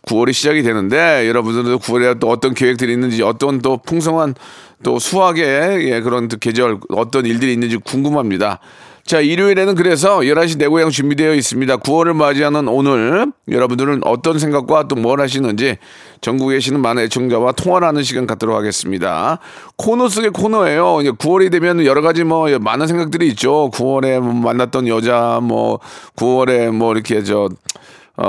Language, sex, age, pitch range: Korean, male, 40-59, 115-155 Hz